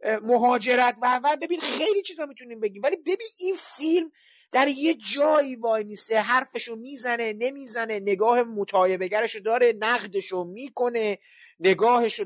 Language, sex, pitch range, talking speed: Persian, male, 185-245 Hz, 120 wpm